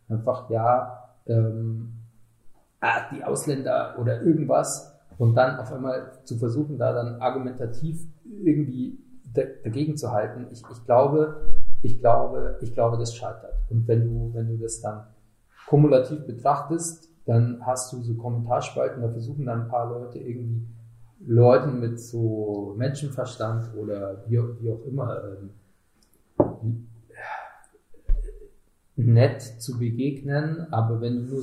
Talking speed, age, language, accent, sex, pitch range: 125 wpm, 40-59, German, German, male, 115-135 Hz